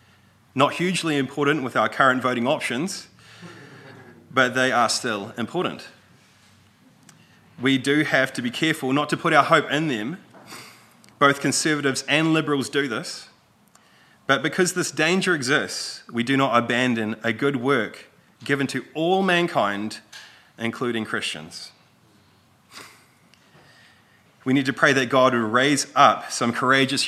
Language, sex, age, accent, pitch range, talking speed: English, male, 30-49, Australian, 110-150 Hz, 135 wpm